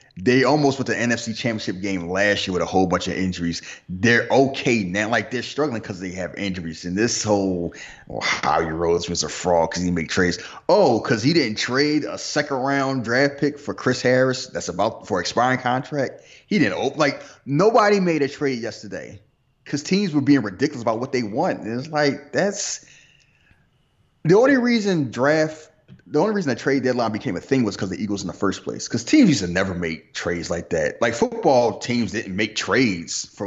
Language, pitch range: English, 95-135 Hz